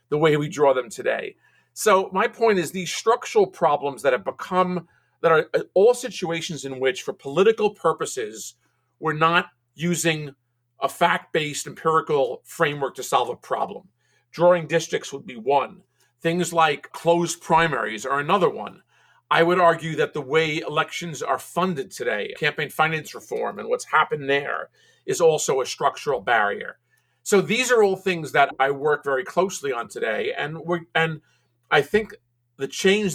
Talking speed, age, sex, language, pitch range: 160 wpm, 50-69, male, English, 135-190 Hz